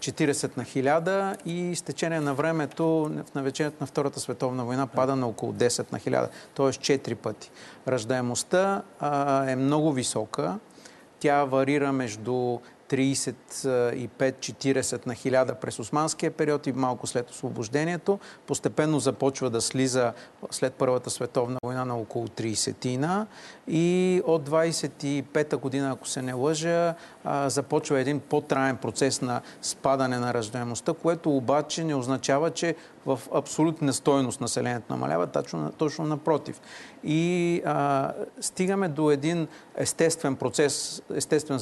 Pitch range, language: 125-155 Hz, Bulgarian